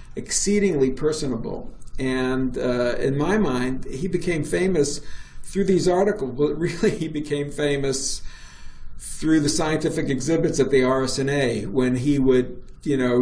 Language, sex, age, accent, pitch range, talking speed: English, male, 50-69, American, 125-150 Hz, 135 wpm